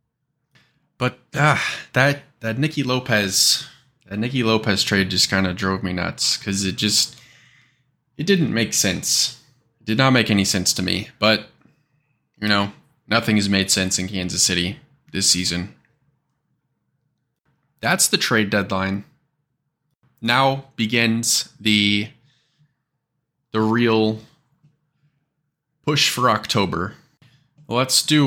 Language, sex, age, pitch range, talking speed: English, male, 20-39, 100-140 Hz, 120 wpm